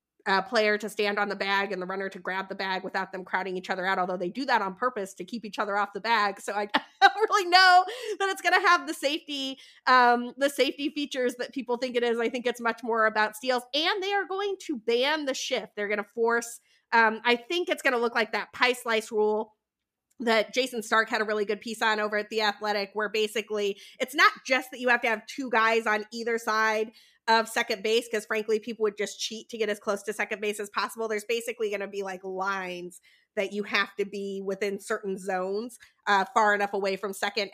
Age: 30-49